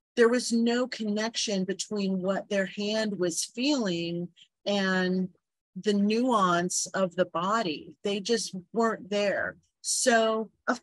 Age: 40-59